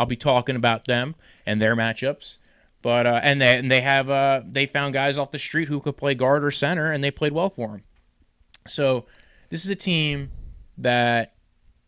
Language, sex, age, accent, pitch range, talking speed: English, male, 20-39, American, 115-145 Hz, 200 wpm